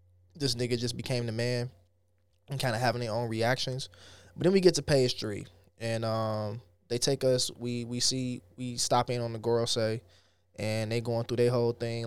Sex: male